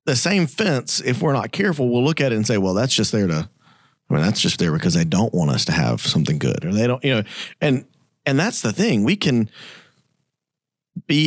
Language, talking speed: English, 245 wpm